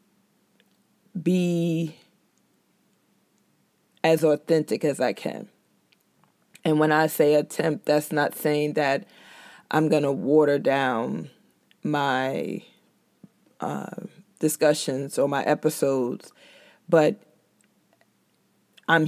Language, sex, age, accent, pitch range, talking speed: English, female, 20-39, American, 150-175 Hz, 90 wpm